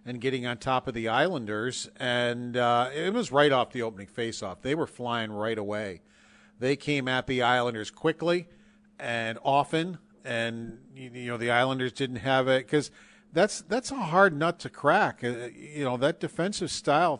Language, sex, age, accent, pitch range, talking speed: English, male, 50-69, American, 120-145 Hz, 180 wpm